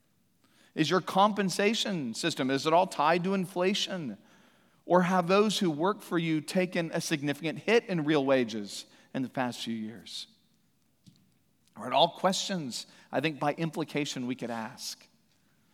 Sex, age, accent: male, 40-59, American